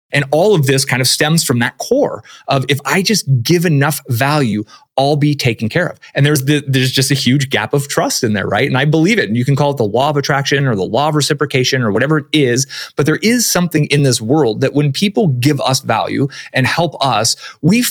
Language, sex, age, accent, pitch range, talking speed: English, male, 30-49, American, 125-155 Hz, 250 wpm